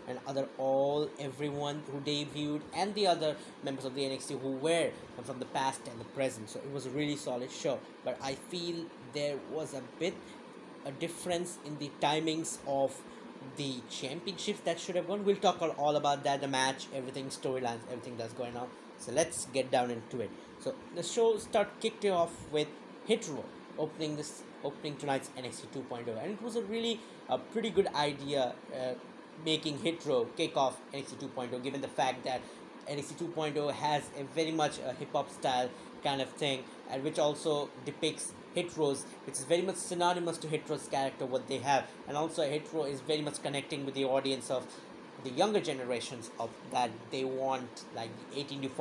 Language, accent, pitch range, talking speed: English, Indian, 135-165 Hz, 180 wpm